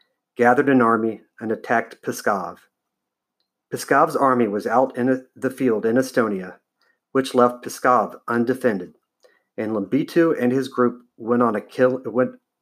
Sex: male